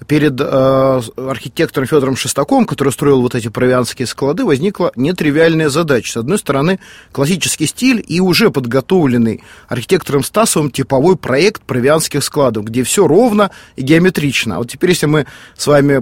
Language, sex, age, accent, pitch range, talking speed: Russian, male, 30-49, native, 130-165 Hz, 145 wpm